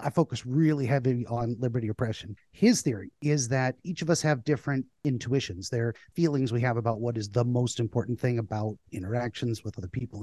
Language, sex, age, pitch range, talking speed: English, male, 30-49, 115-145 Hz, 200 wpm